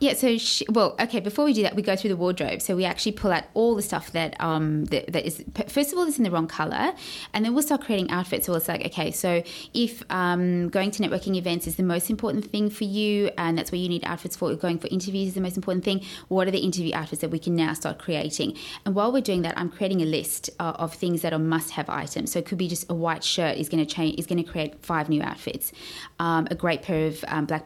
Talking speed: 270 wpm